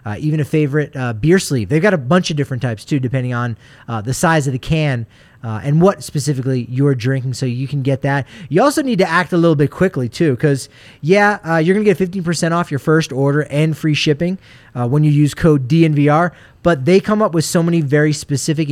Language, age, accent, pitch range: English, 30-49, American, 135-180 Hz